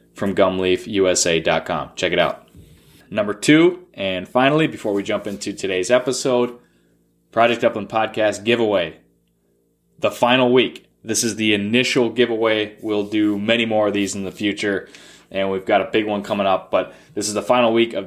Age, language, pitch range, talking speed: 20-39, English, 100-120 Hz, 170 wpm